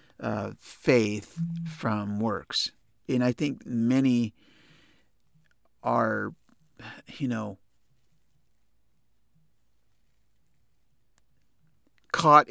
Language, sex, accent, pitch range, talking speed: English, male, American, 110-135 Hz, 60 wpm